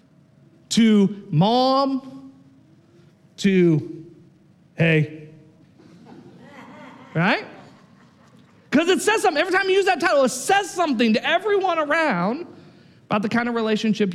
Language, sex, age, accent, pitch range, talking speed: English, male, 40-59, American, 195-300 Hz, 110 wpm